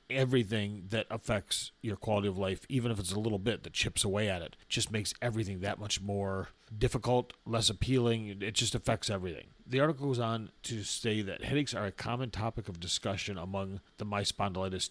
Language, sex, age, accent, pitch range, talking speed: English, male, 40-59, American, 95-115 Hz, 195 wpm